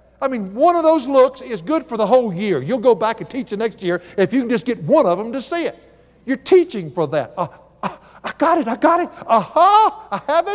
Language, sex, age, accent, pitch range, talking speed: English, male, 60-79, American, 165-265 Hz, 265 wpm